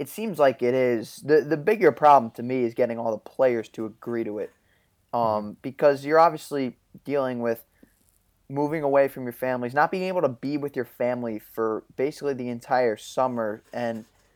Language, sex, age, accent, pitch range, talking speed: English, male, 20-39, American, 115-140 Hz, 190 wpm